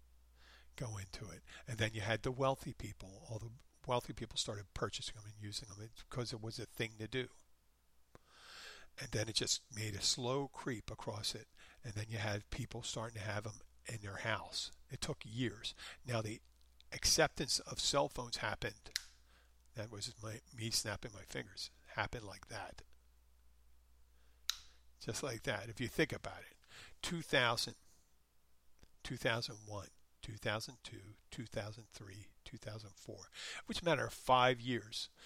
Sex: male